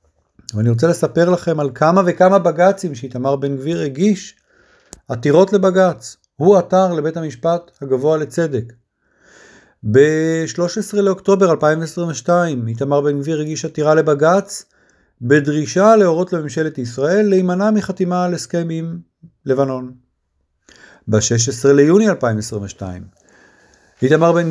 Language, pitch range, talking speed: Hebrew, 135-175 Hz, 105 wpm